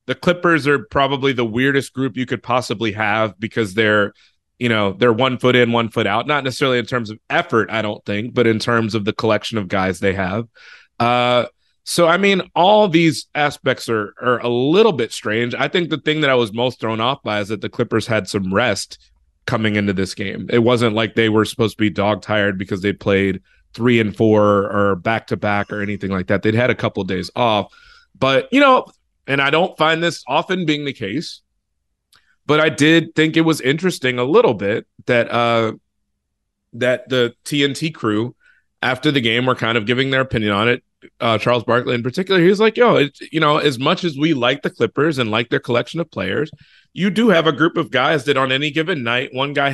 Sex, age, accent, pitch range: male, 30-49, American, 110-140 Hz